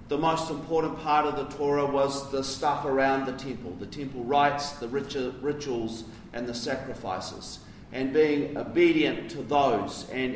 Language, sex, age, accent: English, male, 40-59, Australian